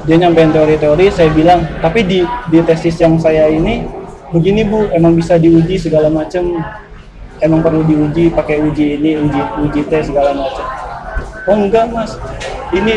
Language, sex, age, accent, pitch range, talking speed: Indonesian, male, 20-39, native, 155-180 Hz, 155 wpm